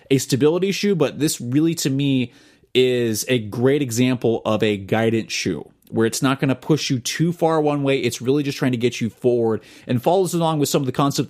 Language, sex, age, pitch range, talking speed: English, male, 30-49, 115-145 Hz, 230 wpm